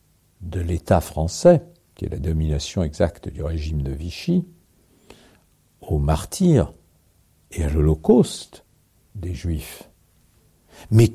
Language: French